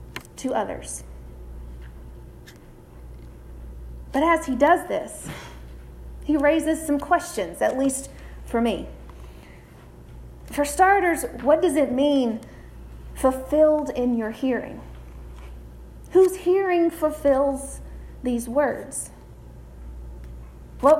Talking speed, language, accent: 90 wpm, English, American